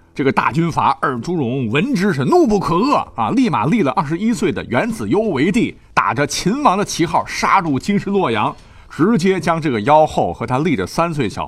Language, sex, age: Chinese, male, 50-69